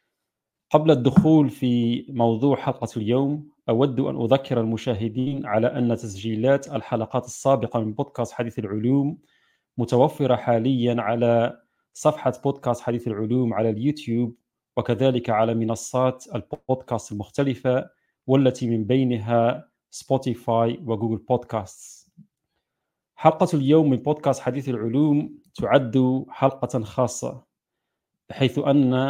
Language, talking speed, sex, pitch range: Arabic, 105 wpm, male, 115-135 Hz